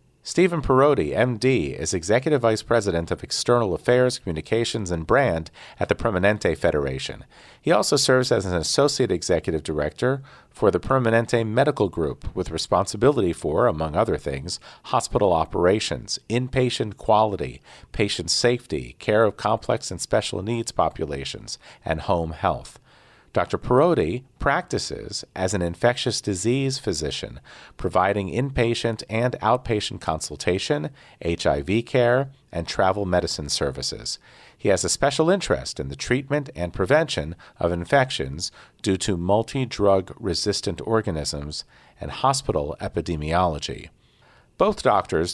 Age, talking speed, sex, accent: 40-59, 125 wpm, male, American